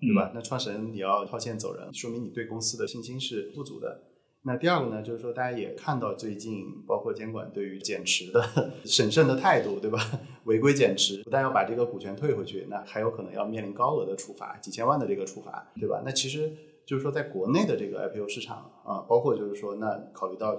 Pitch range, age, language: 110-145 Hz, 20-39, Chinese